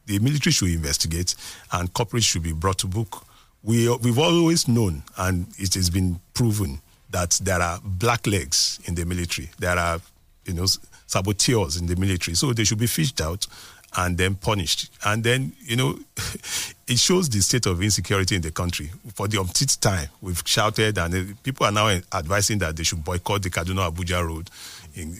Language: English